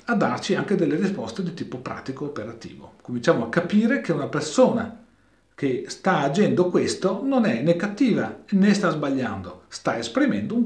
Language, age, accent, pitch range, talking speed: Italian, 40-59, native, 135-200 Hz, 165 wpm